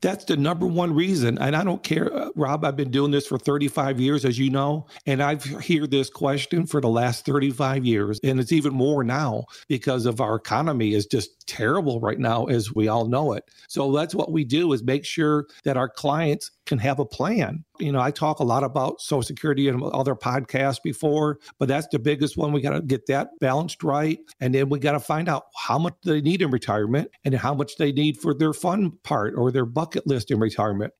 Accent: American